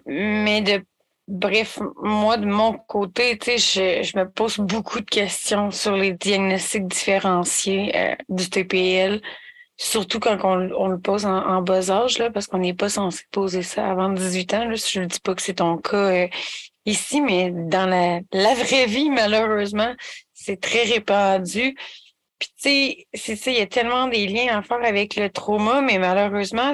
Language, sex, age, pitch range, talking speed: French, female, 30-49, 195-230 Hz, 180 wpm